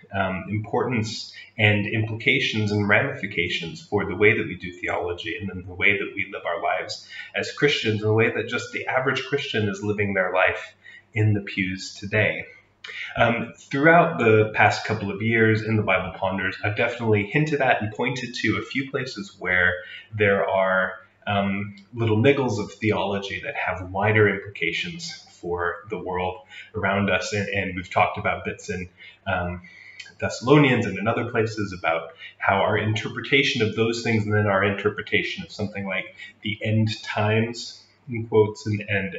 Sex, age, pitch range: male, 30-49, 95-110 Hz